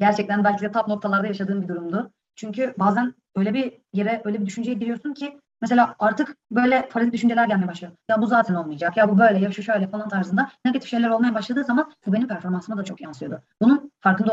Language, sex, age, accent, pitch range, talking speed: Turkish, female, 30-49, native, 195-235 Hz, 210 wpm